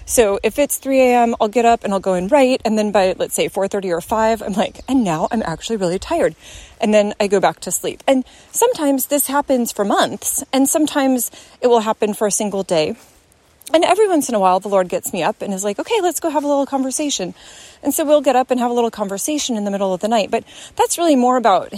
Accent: American